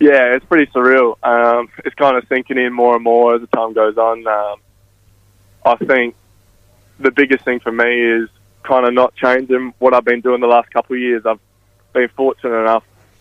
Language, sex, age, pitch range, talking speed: English, male, 20-39, 105-120 Hz, 200 wpm